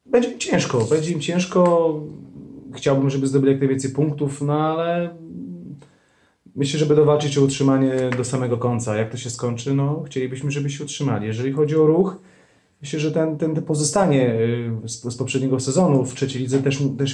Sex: male